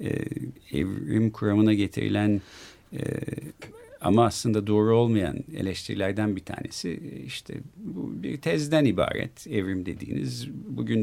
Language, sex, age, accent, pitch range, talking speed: Turkish, male, 50-69, native, 100-135 Hz, 110 wpm